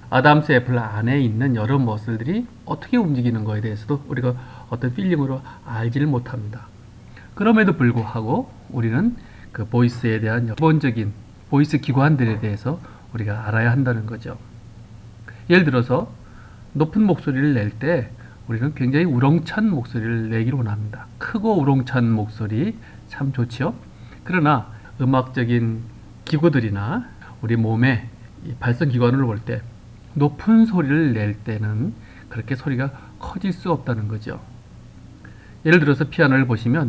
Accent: Korean